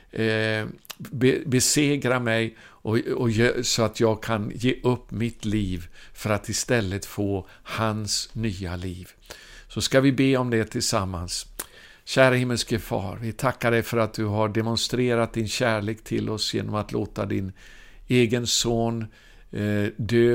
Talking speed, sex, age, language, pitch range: 140 wpm, male, 50-69, Swedish, 105-125 Hz